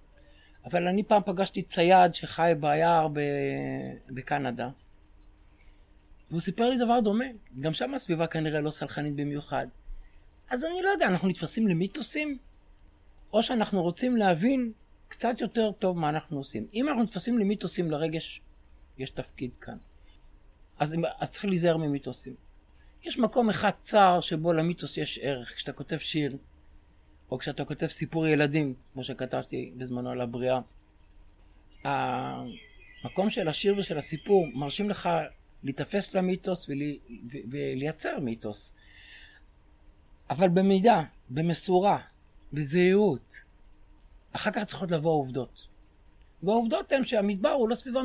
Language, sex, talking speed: Hebrew, male, 125 wpm